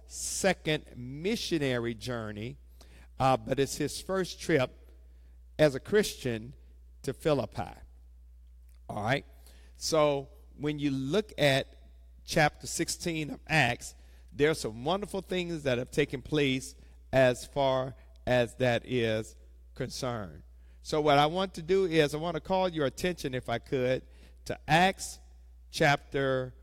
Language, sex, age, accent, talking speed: English, male, 50-69, American, 135 wpm